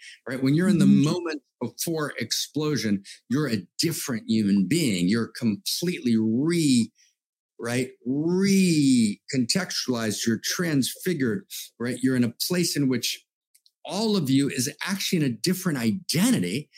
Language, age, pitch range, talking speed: English, 50-69, 125-180 Hz, 130 wpm